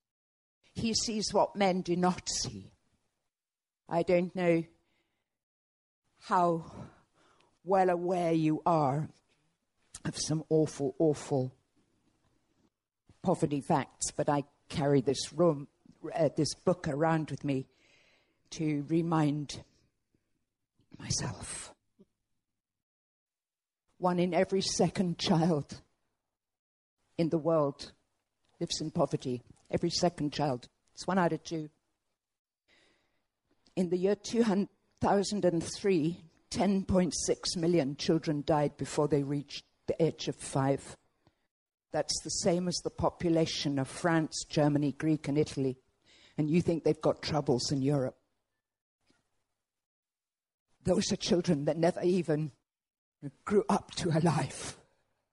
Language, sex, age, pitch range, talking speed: English, female, 50-69, 140-175 Hz, 105 wpm